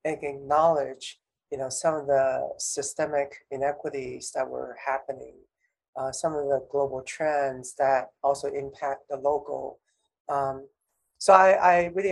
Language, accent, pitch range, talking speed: English, American, 140-160 Hz, 130 wpm